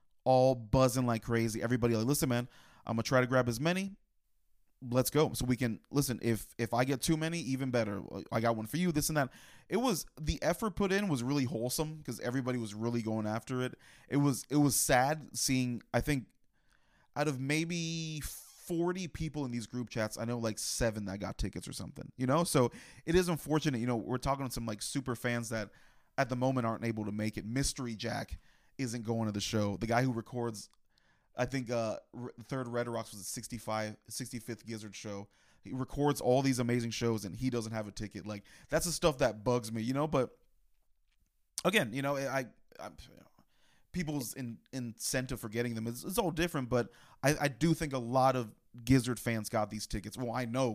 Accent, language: American, English